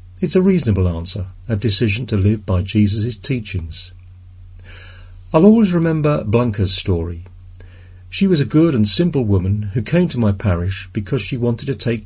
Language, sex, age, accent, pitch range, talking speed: English, male, 50-69, British, 90-130 Hz, 165 wpm